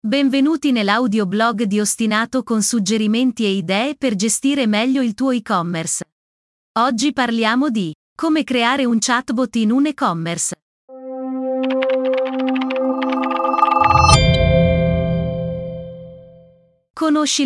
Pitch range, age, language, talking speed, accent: 205-260 Hz, 30-49, Italian, 90 wpm, native